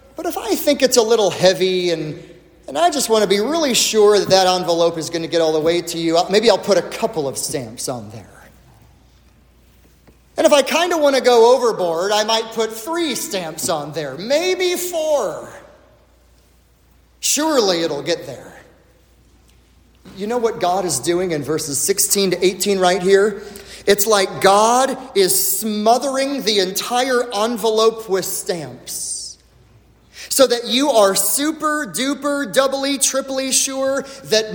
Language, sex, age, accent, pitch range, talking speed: English, male, 30-49, American, 170-260 Hz, 160 wpm